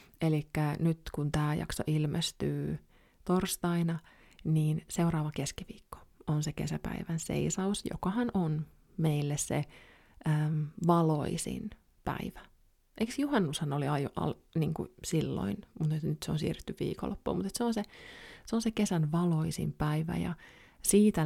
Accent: native